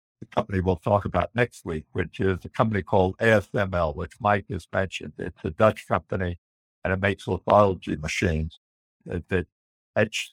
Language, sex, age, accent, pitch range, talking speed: English, male, 60-79, American, 85-110 Hz, 165 wpm